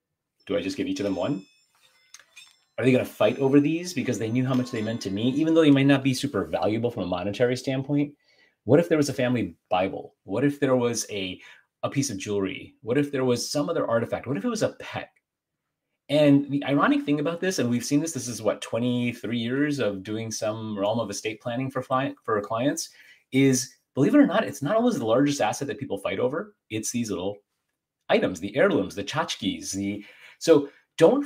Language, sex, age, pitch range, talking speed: English, male, 30-49, 110-145 Hz, 225 wpm